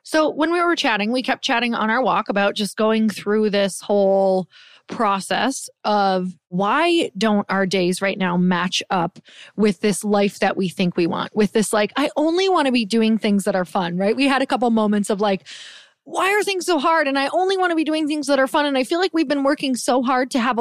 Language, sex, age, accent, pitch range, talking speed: English, female, 20-39, American, 195-265 Hz, 240 wpm